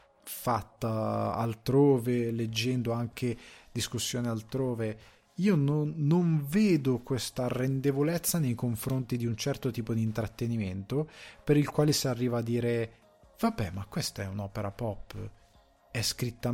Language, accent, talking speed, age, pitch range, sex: Italian, native, 125 wpm, 20-39, 105-130 Hz, male